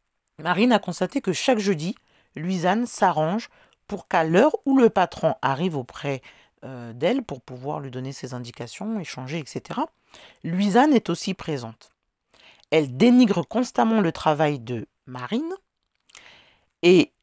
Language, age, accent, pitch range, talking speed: French, 40-59, French, 155-230 Hz, 130 wpm